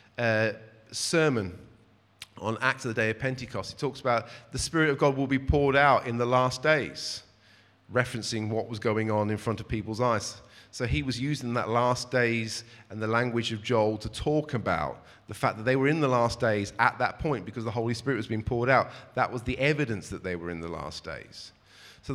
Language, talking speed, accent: English, 220 wpm, British